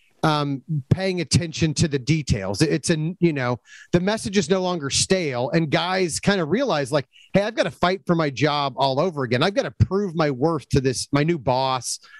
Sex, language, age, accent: male, English, 30-49, American